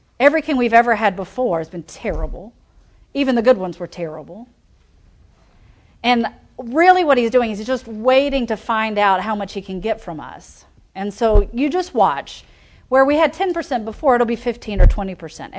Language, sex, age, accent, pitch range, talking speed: English, female, 40-59, American, 200-275 Hz, 185 wpm